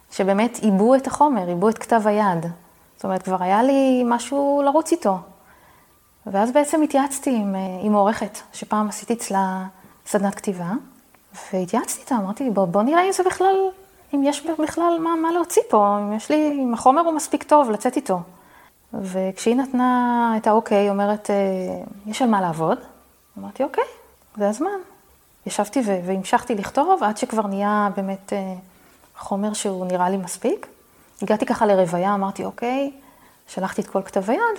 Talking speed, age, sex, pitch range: 155 wpm, 20-39, female, 200-280 Hz